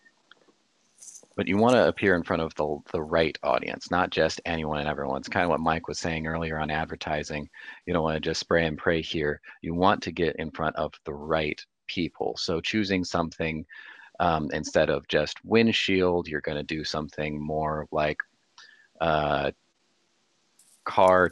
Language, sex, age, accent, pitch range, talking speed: English, male, 30-49, American, 75-85 Hz, 170 wpm